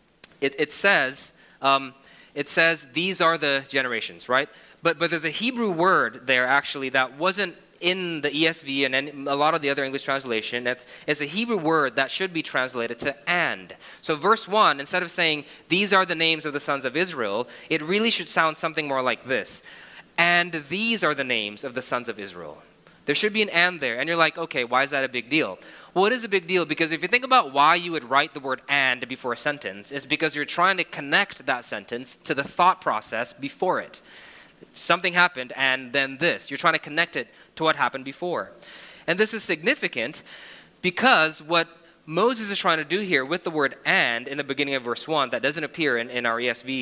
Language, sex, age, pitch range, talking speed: English, male, 20-39, 135-175 Hz, 220 wpm